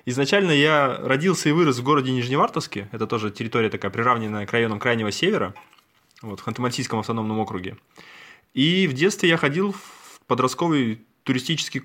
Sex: male